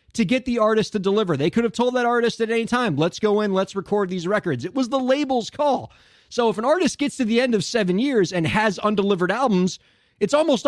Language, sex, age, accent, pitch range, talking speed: English, male, 30-49, American, 155-225 Hz, 245 wpm